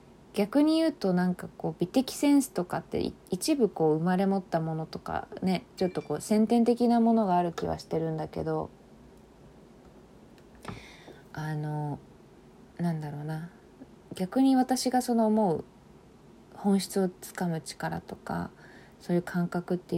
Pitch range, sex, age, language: 165-215 Hz, female, 20-39, Japanese